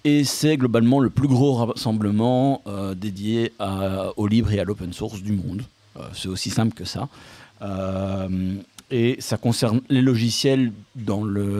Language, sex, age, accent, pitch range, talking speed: French, male, 50-69, French, 95-125 Hz, 165 wpm